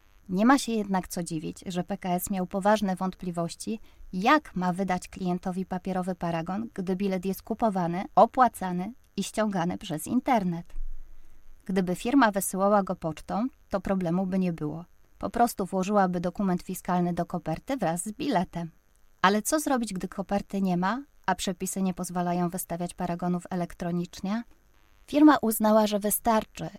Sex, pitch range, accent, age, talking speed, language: female, 175-210 Hz, native, 20-39, 145 wpm, Polish